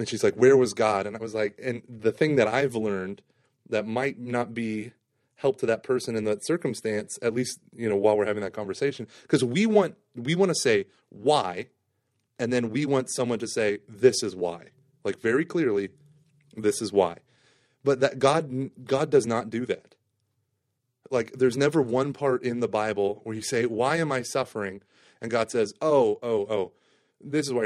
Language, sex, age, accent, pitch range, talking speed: English, male, 30-49, American, 110-135 Hz, 200 wpm